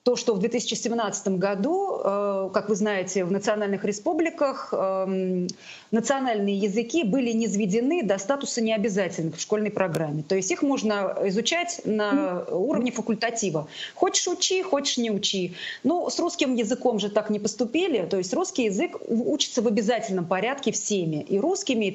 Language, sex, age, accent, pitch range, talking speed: Russian, female, 30-49, native, 195-265 Hz, 150 wpm